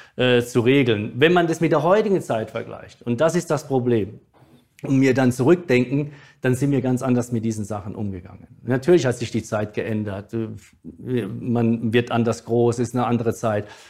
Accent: German